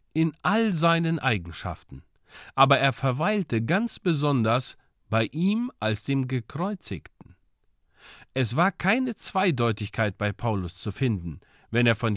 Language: German